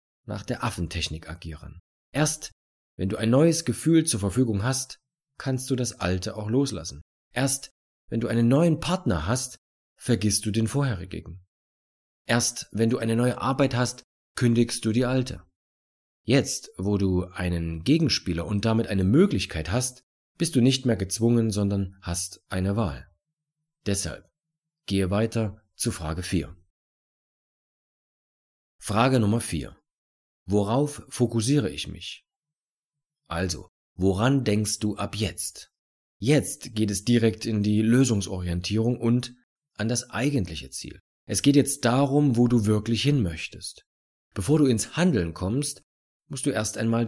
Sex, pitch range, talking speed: male, 90-125 Hz, 140 wpm